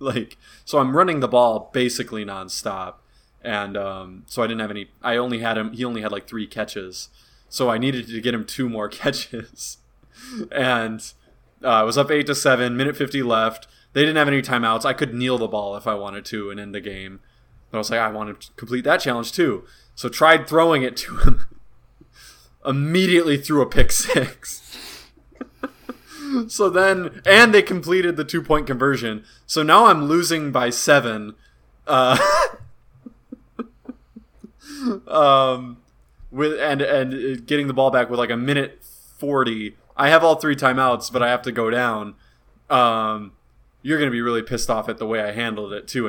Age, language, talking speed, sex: 20-39, English, 180 wpm, male